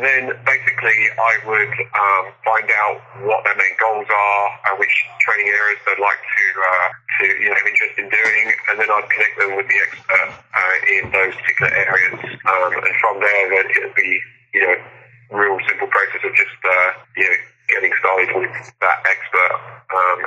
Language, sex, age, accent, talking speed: English, male, 40-59, British, 185 wpm